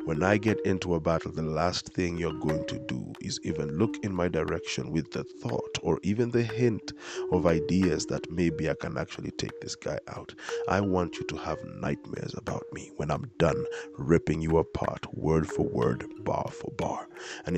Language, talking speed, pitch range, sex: English, 200 wpm, 80-105 Hz, male